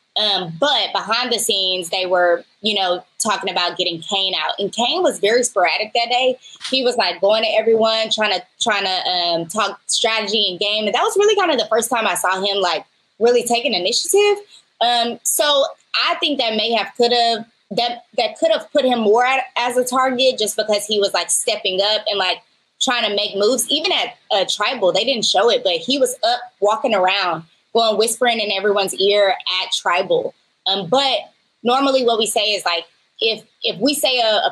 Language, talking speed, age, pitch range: English, 210 wpm, 20-39, 200-245 Hz